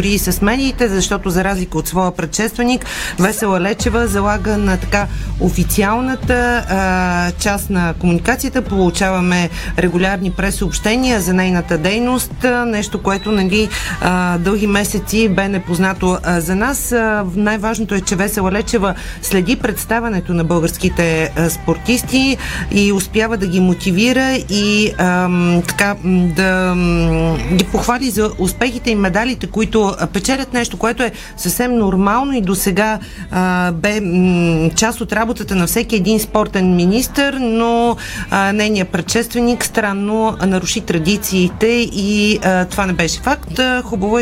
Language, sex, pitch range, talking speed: Bulgarian, female, 180-225 Hz, 135 wpm